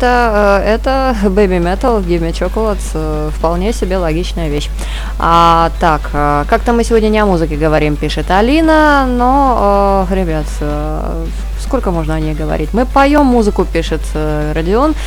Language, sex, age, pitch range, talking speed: Russian, female, 20-39, 155-225 Hz, 125 wpm